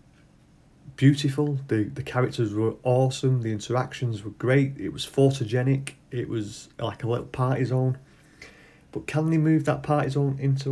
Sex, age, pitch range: male, 30-49, 110-140 Hz